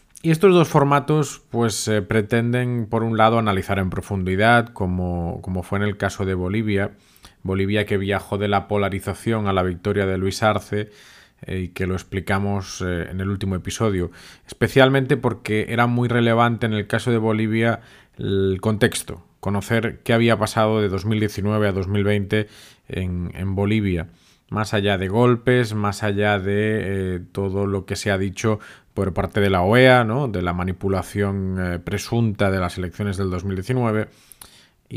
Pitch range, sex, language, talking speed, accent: 95-115 Hz, male, Spanish, 165 wpm, Spanish